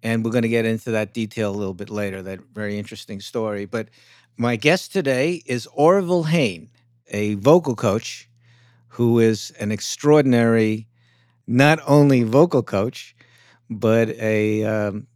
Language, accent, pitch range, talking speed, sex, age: English, American, 105-140 Hz, 145 wpm, male, 60-79